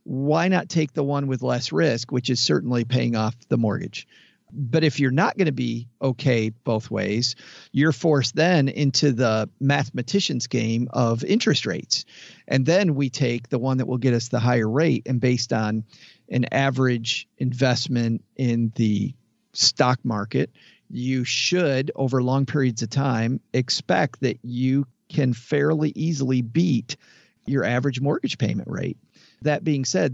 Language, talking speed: English, 160 wpm